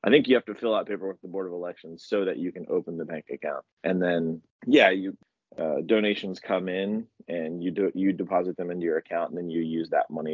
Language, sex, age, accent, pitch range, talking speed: English, male, 20-39, American, 85-100 Hz, 255 wpm